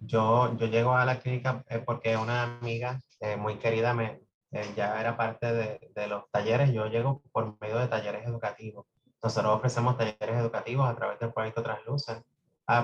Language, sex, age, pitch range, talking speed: English, male, 30-49, 110-130 Hz, 180 wpm